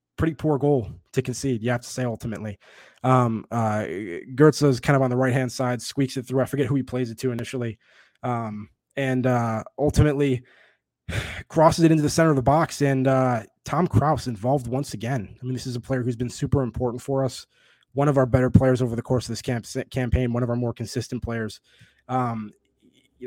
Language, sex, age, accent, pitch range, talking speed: English, male, 20-39, American, 120-140 Hz, 215 wpm